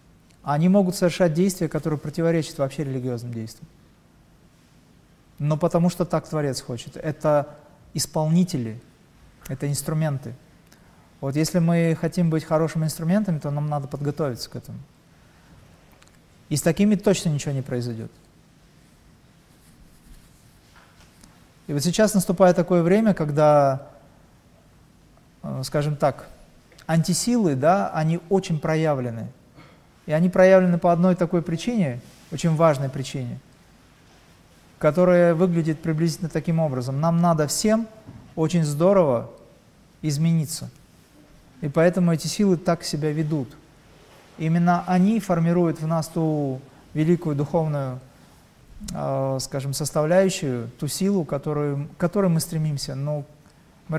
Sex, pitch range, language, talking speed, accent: male, 145-175 Hz, Russian, 110 wpm, native